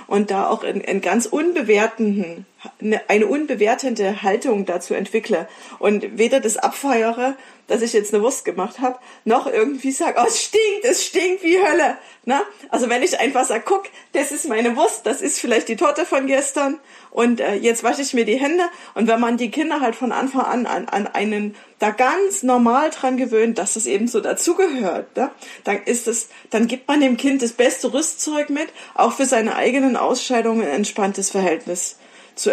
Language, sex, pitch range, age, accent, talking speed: German, female, 220-275 Hz, 40-59, German, 185 wpm